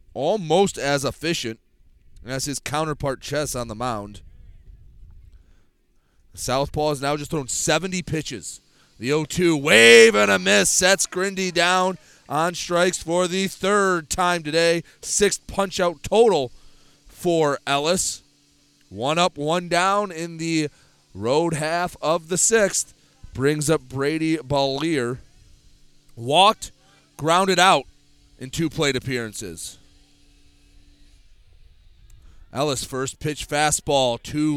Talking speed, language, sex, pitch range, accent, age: 115 wpm, English, male, 95-160 Hz, American, 30-49